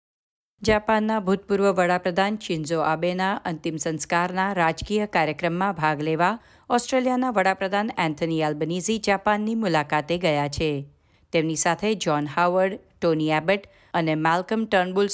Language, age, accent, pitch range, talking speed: Gujarati, 50-69, native, 160-205 Hz, 115 wpm